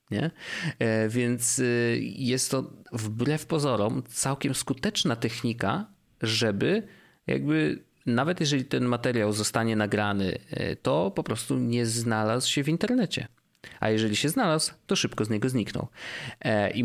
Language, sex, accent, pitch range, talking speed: Polish, male, native, 110-140 Hz, 120 wpm